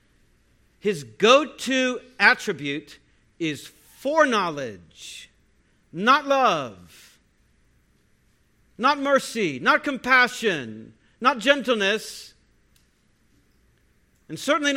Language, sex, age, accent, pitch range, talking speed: English, male, 50-69, American, 200-275 Hz, 60 wpm